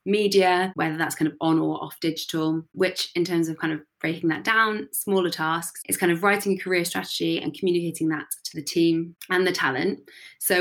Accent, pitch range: British, 160-190 Hz